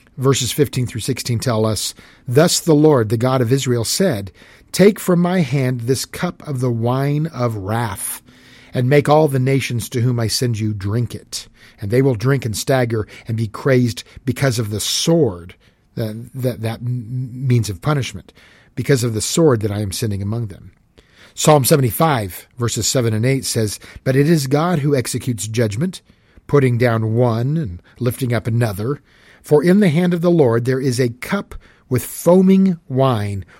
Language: English